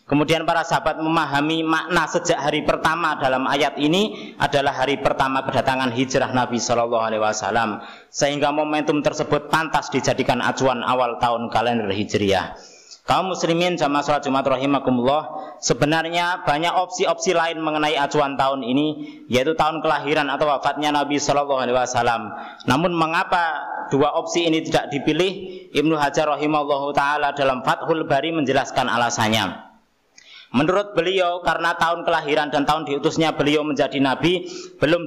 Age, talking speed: 20-39, 140 wpm